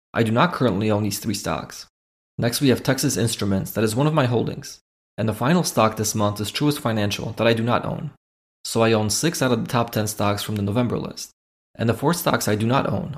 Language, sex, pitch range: English, male, 105-130 Hz